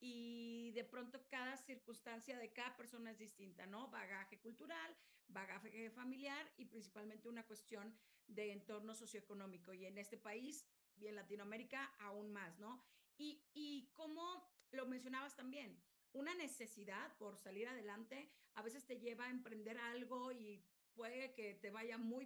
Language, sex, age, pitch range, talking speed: Spanish, female, 40-59, 210-255 Hz, 150 wpm